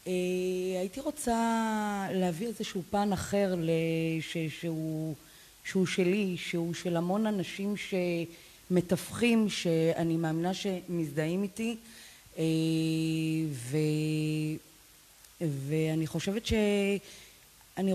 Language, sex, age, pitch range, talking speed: Hebrew, female, 30-49, 170-215 Hz, 80 wpm